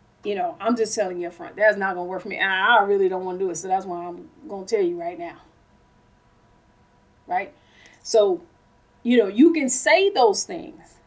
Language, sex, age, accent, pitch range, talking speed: English, female, 30-49, American, 205-325 Hz, 220 wpm